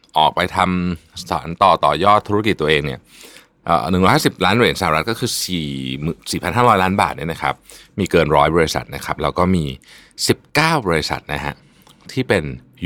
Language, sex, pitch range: Thai, male, 75-105 Hz